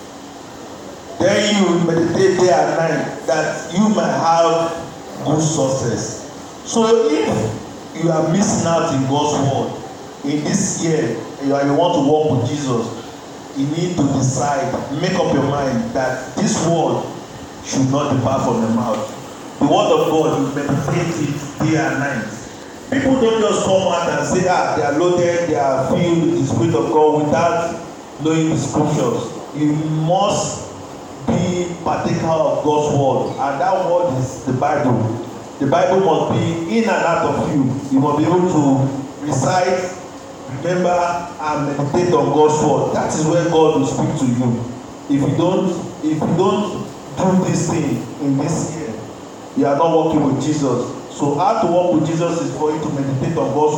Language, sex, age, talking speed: English, male, 40-59, 170 wpm